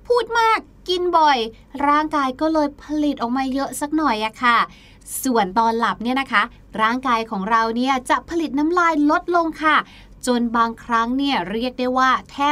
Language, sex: Thai, female